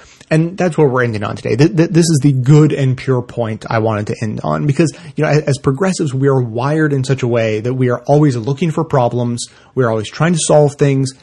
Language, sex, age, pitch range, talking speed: English, male, 30-49, 120-150 Hz, 240 wpm